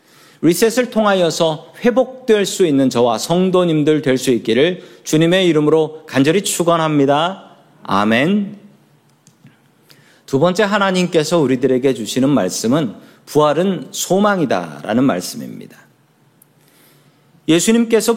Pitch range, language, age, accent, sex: 125-180 Hz, Korean, 40-59, native, male